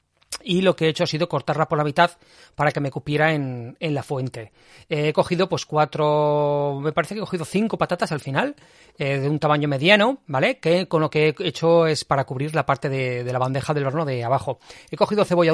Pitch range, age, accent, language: 140-180 Hz, 40-59, Spanish, Spanish